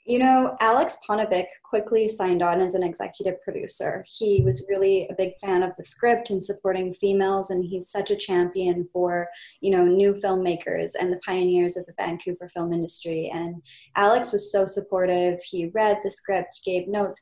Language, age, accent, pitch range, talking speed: English, 10-29, American, 175-195 Hz, 180 wpm